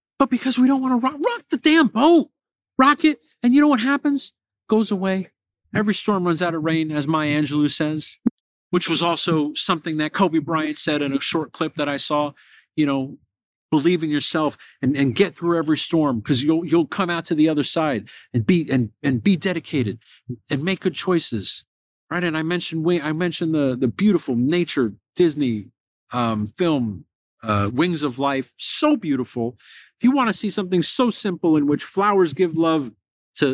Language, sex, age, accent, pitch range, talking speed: English, male, 50-69, American, 145-205 Hz, 195 wpm